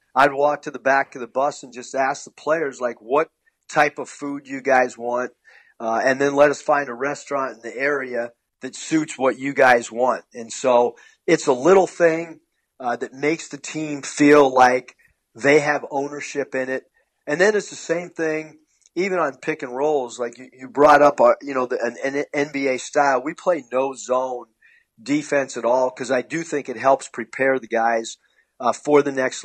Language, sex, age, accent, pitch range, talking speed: English, male, 40-59, American, 125-150 Hz, 200 wpm